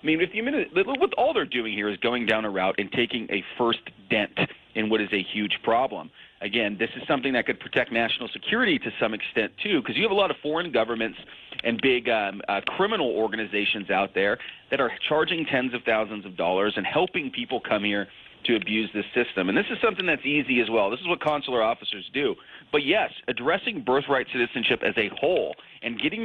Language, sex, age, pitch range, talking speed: English, male, 40-59, 110-150 Hz, 210 wpm